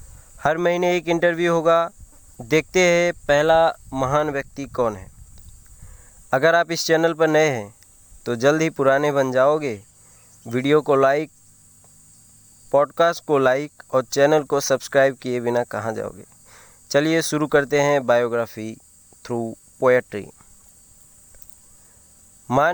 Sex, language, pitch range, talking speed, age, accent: male, Hindi, 115-155 Hz, 120 wpm, 20-39, native